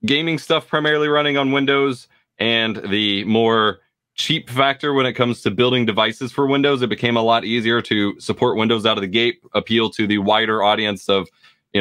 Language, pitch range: English, 105-130 Hz